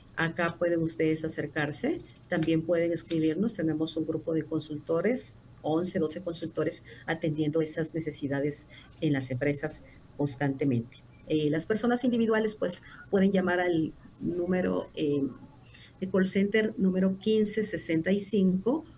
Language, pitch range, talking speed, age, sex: Spanish, 145-185 Hz, 115 wpm, 50-69, female